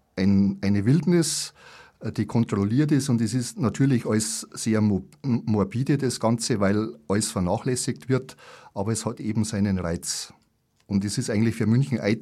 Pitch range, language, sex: 100-125 Hz, German, male